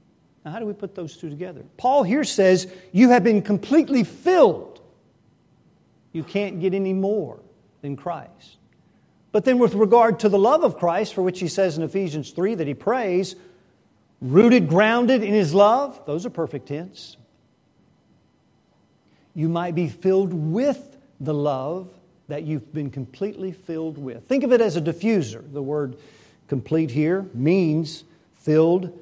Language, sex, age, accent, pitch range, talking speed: English, male, 50-69, American, 155-210 Hz, 155 wpm